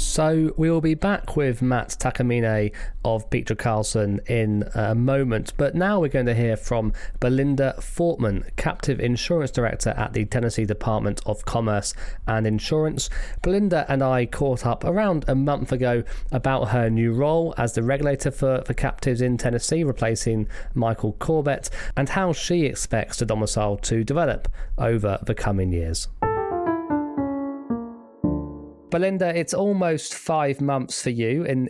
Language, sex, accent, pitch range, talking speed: English, male, British, 110-140 Hz, 150 wpm